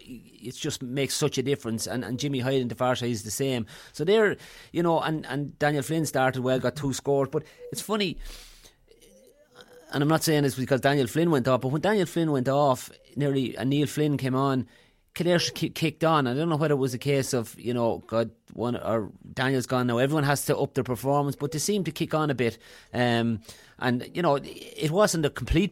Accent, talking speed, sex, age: Irish, 225 wpm, male, 30-49